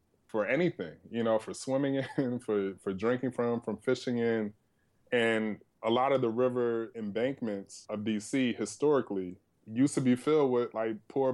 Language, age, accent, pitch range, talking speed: English, 20-39, American, 110-135 Hz, 165 wpm